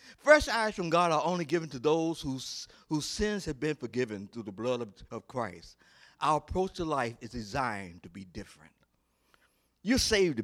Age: 60-79